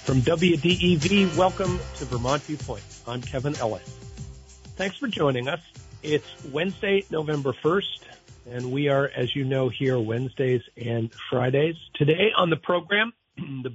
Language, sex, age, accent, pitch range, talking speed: English, male, 50-69, American, 110-155 Hz, 140 wpm